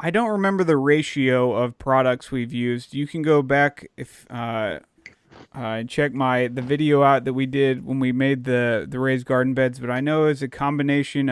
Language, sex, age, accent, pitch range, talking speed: English, male, 30-49, American, 120-140 Hz, 205 wpm